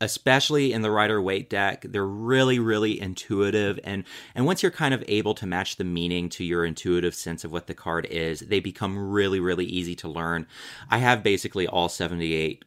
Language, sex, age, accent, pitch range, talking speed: English, male, 30-49, American, 85-115 Hz, 200 wpm